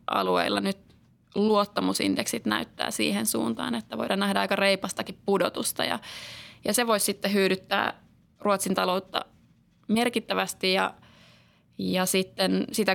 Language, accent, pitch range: Finnish, native, 185-225 Hz